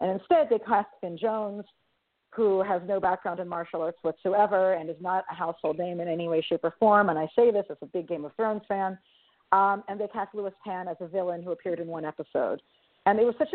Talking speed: 245 wpm